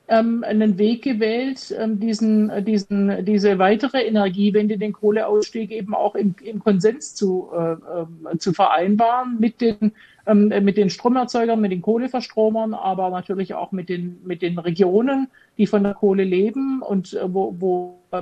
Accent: German